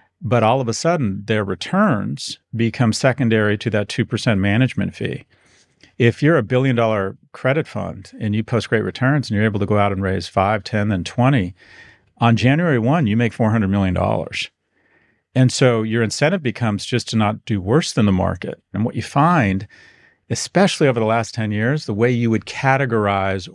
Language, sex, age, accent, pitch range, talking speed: English, male, 40-59, American, 110-150 Hz, 185 wpm